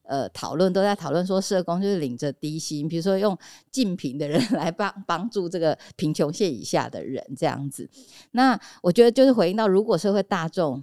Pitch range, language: 150-200 Hz, Chinese